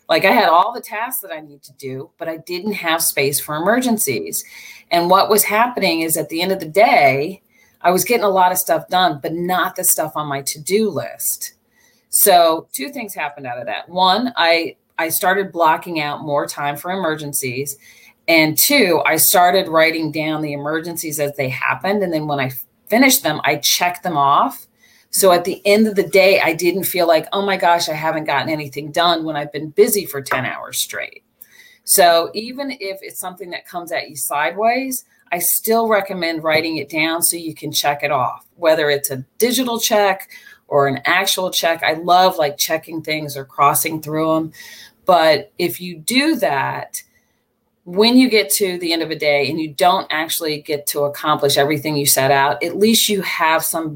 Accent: American